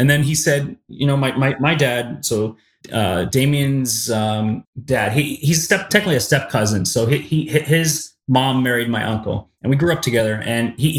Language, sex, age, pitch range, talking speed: English, male, 30-49, 115-135 Hz, 210 wpm